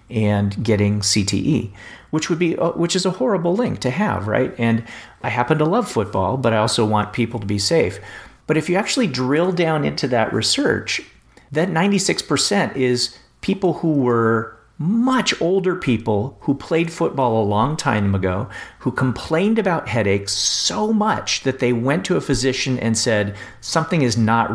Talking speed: 170 wpm